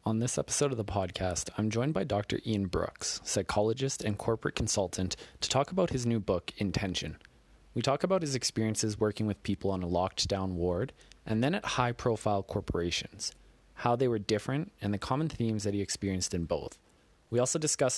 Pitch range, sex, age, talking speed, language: 95-120 Hz, male, 20-39, 195 wpm, English